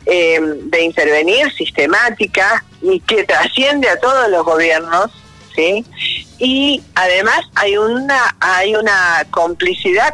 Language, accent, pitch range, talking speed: Spanish, Argentinian, 175-265 Hz, 110 wpm